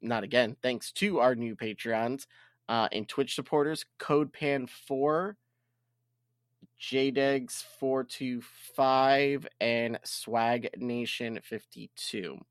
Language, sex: English, male